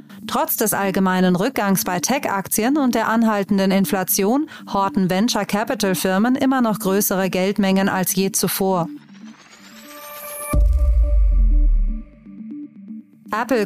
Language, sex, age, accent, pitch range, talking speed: German, female, 30-49, German, 190-230 Hz, 90 wpm